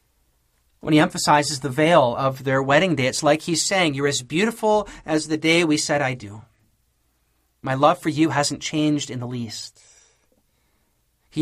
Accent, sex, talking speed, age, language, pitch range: American, male, 175 wpm, 30-49, English, 145-195 Hz